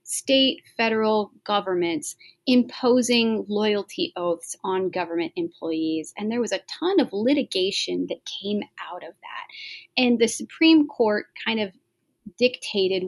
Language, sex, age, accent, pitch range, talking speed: English, female, 30-49, American, 185-250 Hz, 130 wpm